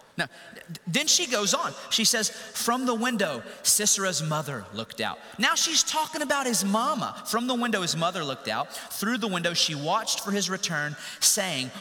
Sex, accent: male, American